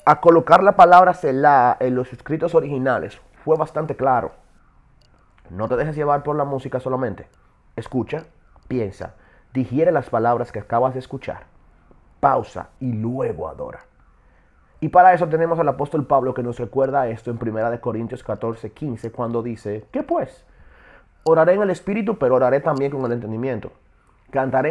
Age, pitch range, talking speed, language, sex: 30-49, 115-155 Hz, 160 wpm, Spanish, male